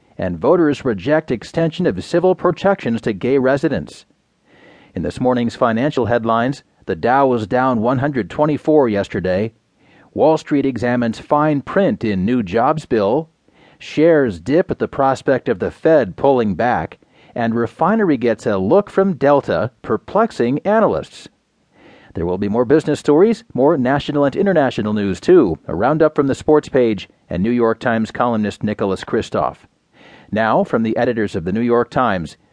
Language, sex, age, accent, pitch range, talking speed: English, male, 40-59, American, 120-160 Hz, 155 wpm